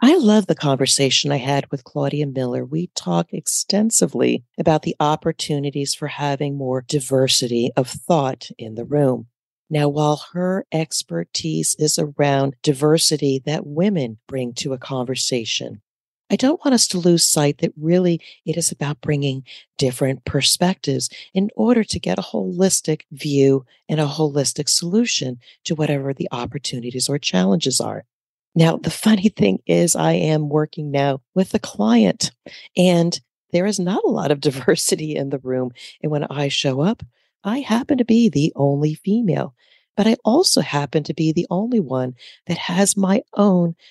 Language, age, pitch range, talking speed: English, 40-59, 140-190 Hz, 160 wpm